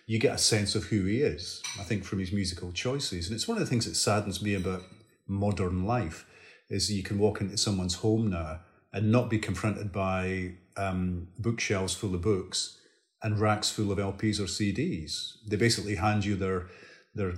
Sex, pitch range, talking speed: male, 95-110 Hz, 195 wpm